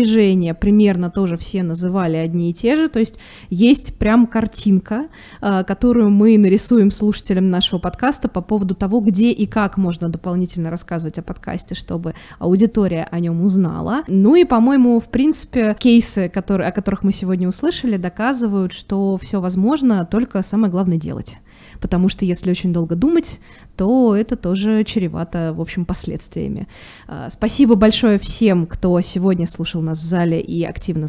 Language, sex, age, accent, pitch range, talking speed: Russian, female, 20-39, native, 170-215 Hz, 150 wpm